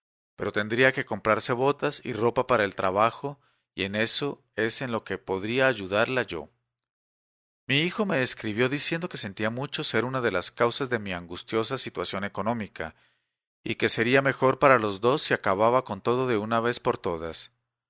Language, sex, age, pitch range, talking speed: English, male, 40-59, 100-130 Hz, 180 wpm